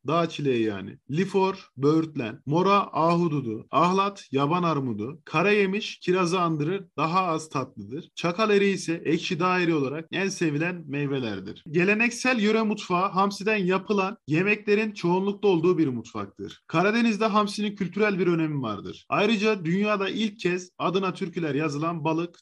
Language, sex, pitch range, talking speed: Turkish, male, 155-195 Hz, 130 wpm